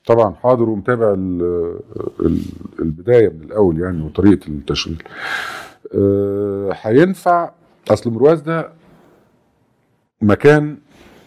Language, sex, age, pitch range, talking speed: Arabic, male, 50-69, 95-130 Hz, 80 wpm